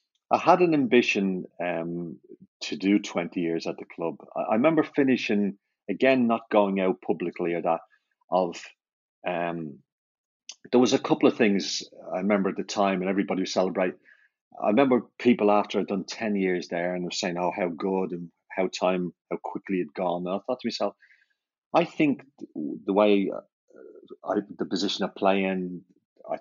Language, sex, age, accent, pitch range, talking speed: English, male, 40-59, British, 90-110 Hz, 175 wpm